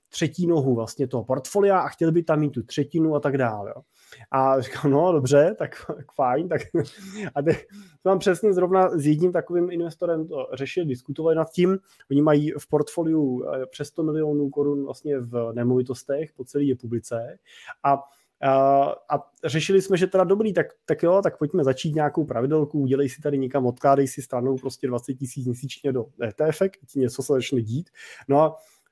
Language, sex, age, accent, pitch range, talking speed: Czech, male, 20-39, native, 135-170 Hz, 175 wpm